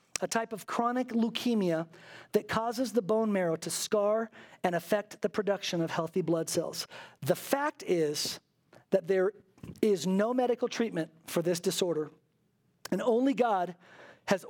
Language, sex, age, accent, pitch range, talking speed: English, male, 40-59, American, 175-240 Hz, 150 wpm